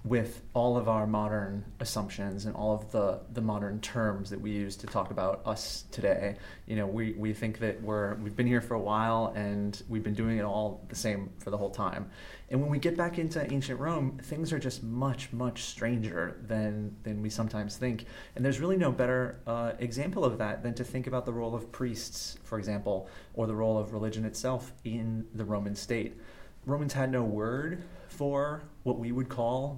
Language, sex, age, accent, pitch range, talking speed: English, male, 30-49, American, 105-125 Hz, 210 wpm